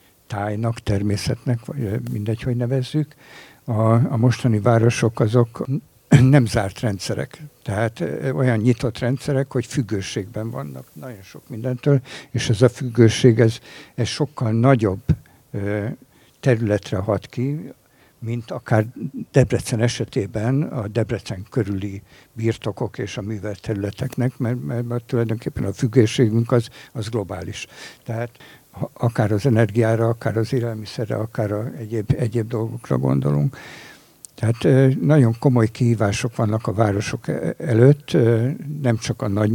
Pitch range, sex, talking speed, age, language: 110-130 Hz, male, 120 wpm, 60-79, Hungarian